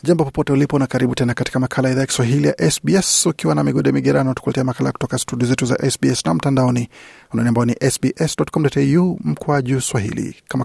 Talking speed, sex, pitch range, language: 190 wpm, male, 120-145 Hz, Swahili